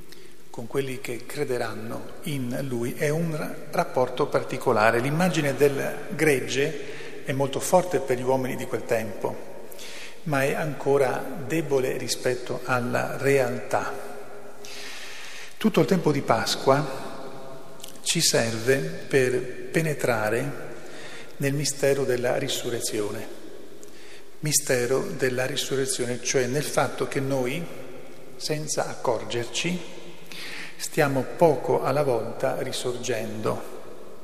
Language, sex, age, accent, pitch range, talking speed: Italian, male, 40-59, native, 125-155 Hz, 100 wpm